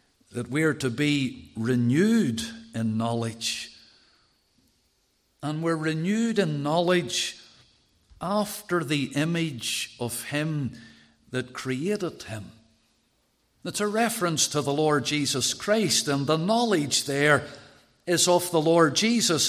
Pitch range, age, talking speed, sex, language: 125-190 Hz, 50-69, 115 wpm, male, English